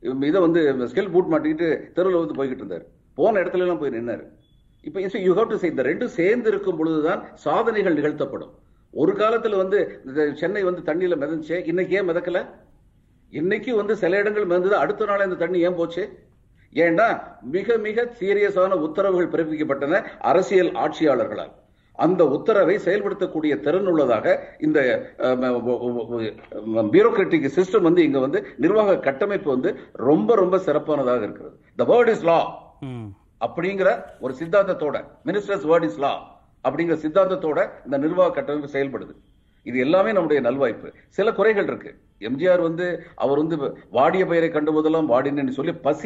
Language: Tamil